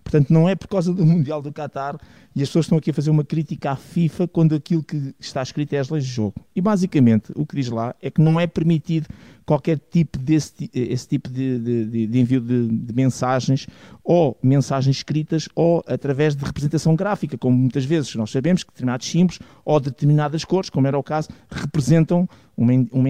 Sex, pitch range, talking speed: male, 130-165 Hz, 205 wpm